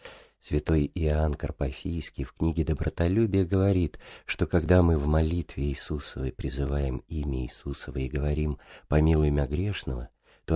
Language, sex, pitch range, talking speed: Russian, male, 75-90 Hz, 125 wpm